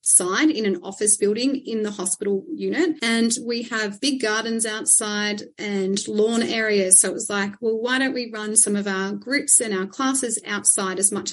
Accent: Australian